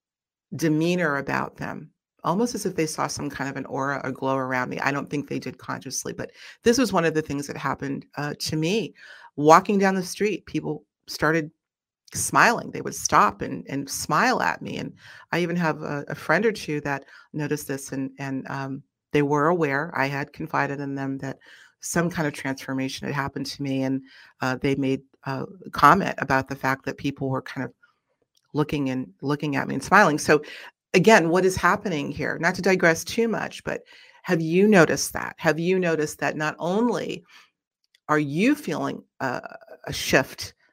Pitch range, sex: 140-170 Hz, female